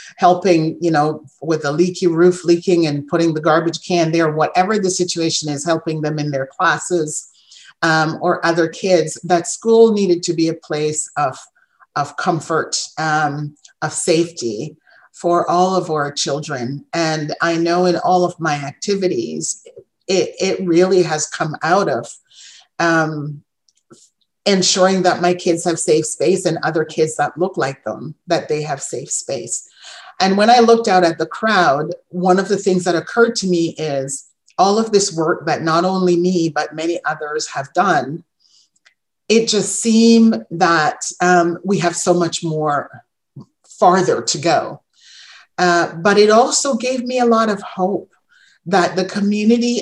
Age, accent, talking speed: 40-59, American, 165 wpm